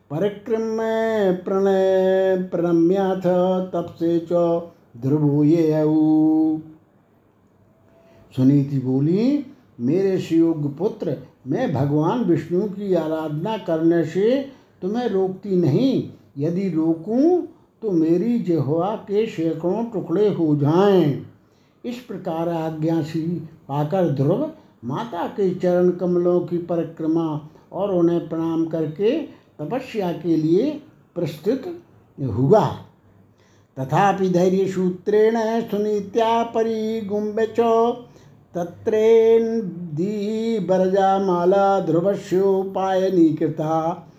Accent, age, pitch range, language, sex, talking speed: native, 60-79, 160-195 Hz, Hindi, male, 75 wpm